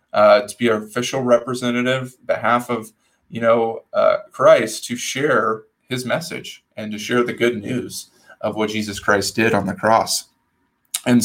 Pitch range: 110-125 Hz